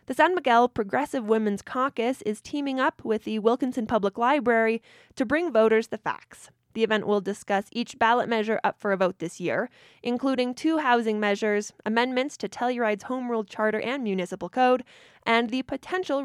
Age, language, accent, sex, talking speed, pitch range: 20-39, English, American, female, 175 wpm, 200-250 Hz